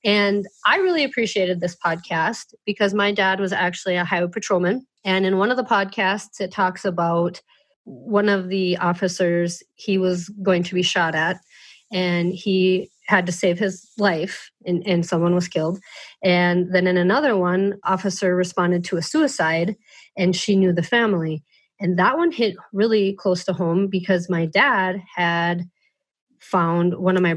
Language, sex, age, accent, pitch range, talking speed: English, female, 30-49, American, 180-230 Hz, 170 wpm